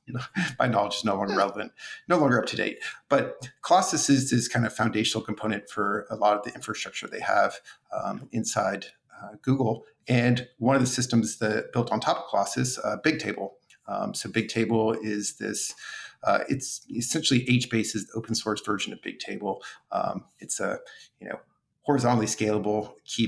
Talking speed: 180 wpm